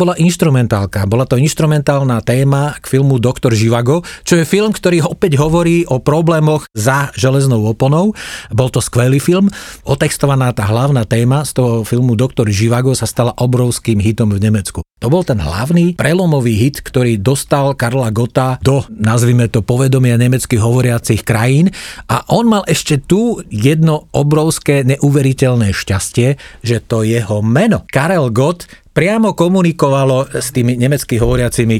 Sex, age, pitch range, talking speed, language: male, 40-59, 115-145 Hz, 145 wpm, Slovak